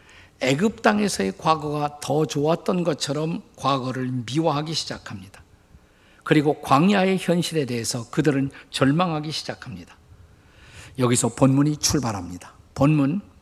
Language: Korean